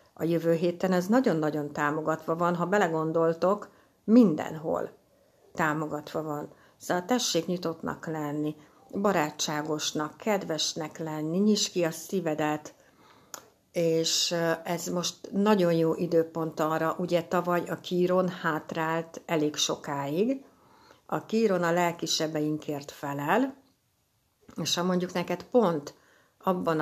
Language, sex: Hungarian, female